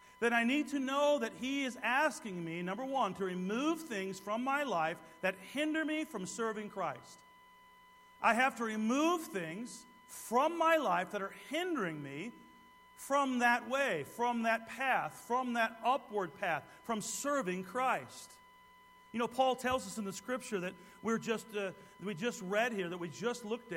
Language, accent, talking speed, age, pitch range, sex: English, American, 175 wpm, 40-59, 200-255 Hz, male